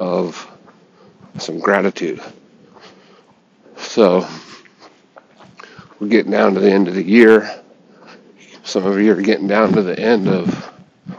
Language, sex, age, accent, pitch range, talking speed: English, male, 50-69, American, 190-215 Hz, 125 wpm